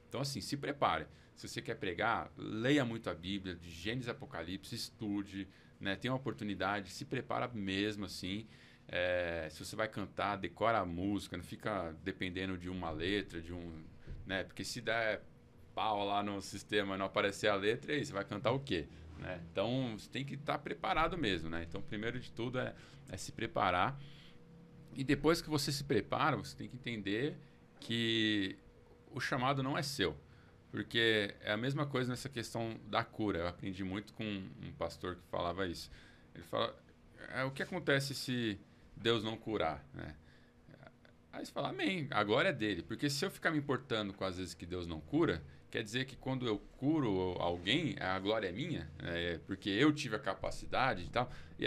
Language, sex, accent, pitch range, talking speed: Portuguese, male, Brazilian, 95-130 Hz, 185 wpm